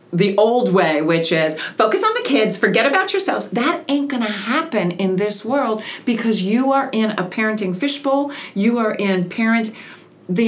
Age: 40-59